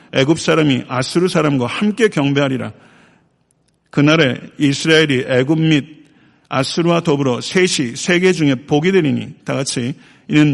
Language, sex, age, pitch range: Korean, male, 50-69, 130-160 Hz